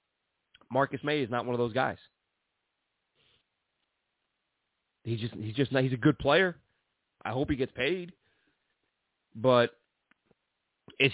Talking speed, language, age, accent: 115 wpm, English, 30-49, American